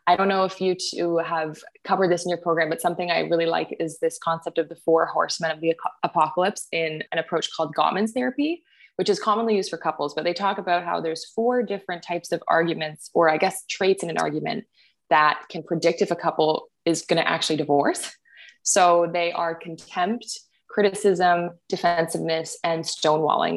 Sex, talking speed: female, 195 wpm